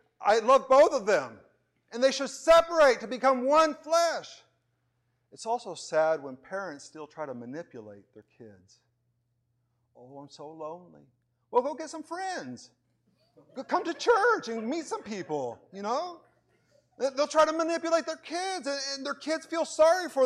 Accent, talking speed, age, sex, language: American, 160 wpm, 50-69, male, English